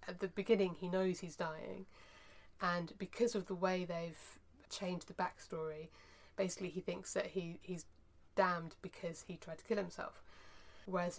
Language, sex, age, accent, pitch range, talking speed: English, female, 20-39, British, 165-200 Hz, 160 wpm